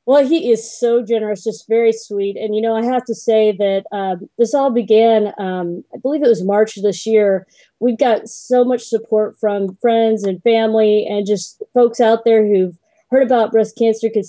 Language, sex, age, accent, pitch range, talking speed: English, female, 30-49, American, 195-230 Hz, 205 wpm